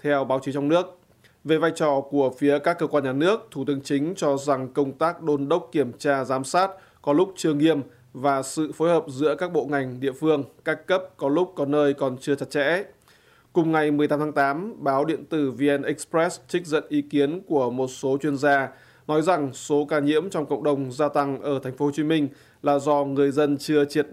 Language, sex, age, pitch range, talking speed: Vietnamese, male, 20-39, 140-155 Hz, 230 wpm